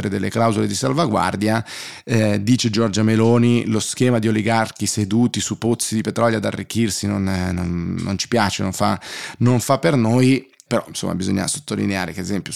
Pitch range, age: 100-115 Hz, 20-39